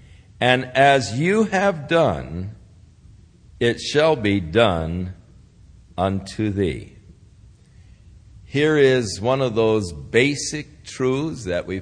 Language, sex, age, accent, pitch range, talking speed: English, male, 60-79, American, 95-140 Hz, 100 wpm